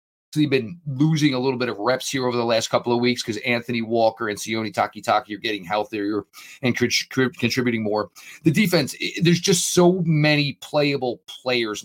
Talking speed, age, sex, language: 175 wpm, 40-59, male, English